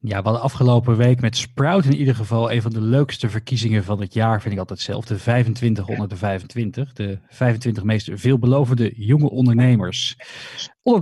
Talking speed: 170 wpm